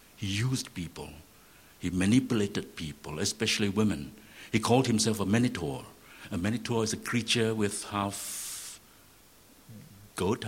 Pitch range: 85-110 Hz